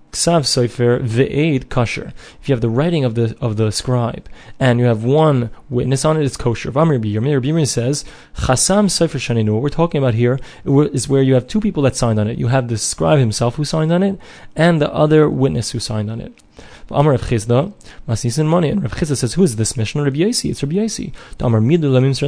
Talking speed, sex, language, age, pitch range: 145 wpm, male, English, 20-39, 115-145 Hz